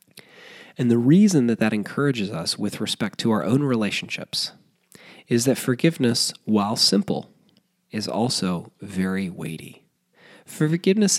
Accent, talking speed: American, 125 wpm